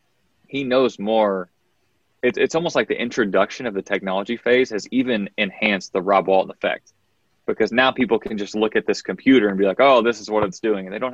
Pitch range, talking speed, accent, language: 95-115 Hz, 220 wpm, American, English